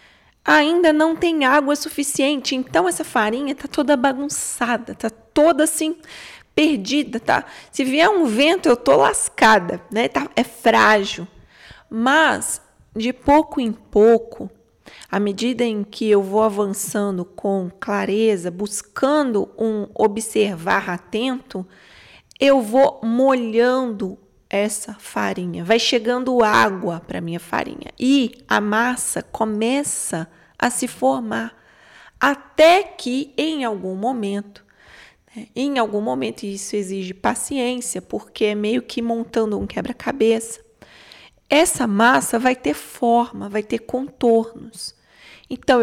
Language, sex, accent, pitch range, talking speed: Portuguese, female, Brazilian, 210-275 Hz, 120 wpm